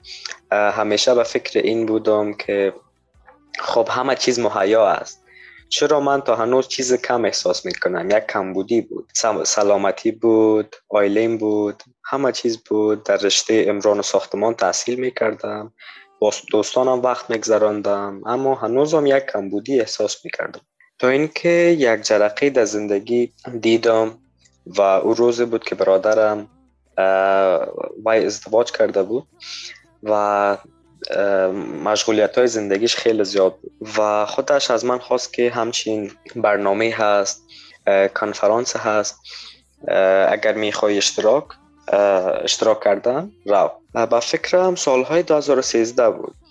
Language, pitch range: Persian, 105-125 Hz